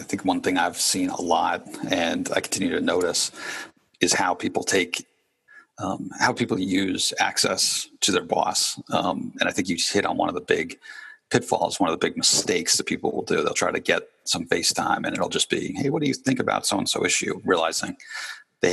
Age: 40-59